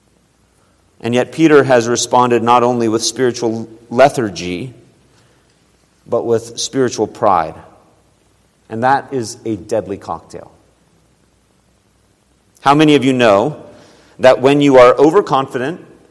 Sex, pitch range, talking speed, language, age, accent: male, 105-130 Hz, 110 wpm, English, 40-59, American